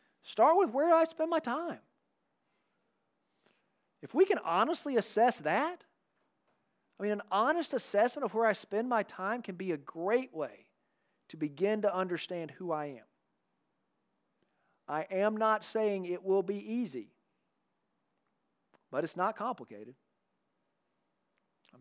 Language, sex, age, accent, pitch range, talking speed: English, male, 40-59, American, 160-220 Hz, 140 wpm